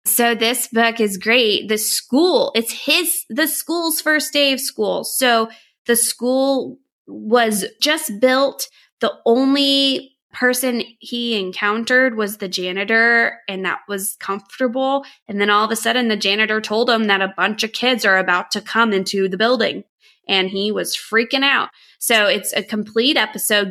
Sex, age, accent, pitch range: female, 20-39, American, 195-235 Hz